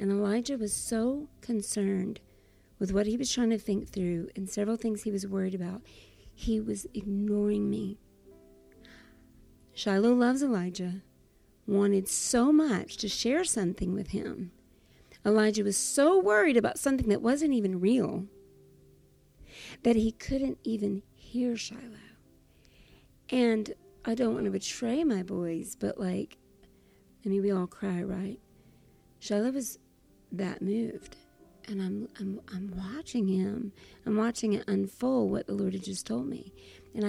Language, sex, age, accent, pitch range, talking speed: English, female, 40-59, American, 190-230 Hz, 145 wpm